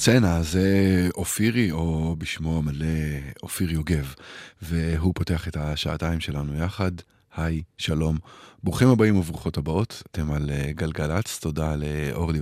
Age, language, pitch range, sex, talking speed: 20-39, Hebrew, 75-95 Hz, male, 120 wpm